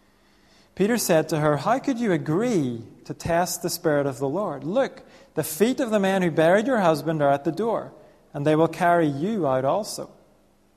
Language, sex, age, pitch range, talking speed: English, male, 40-59, 130-175 Hz, 200 wpm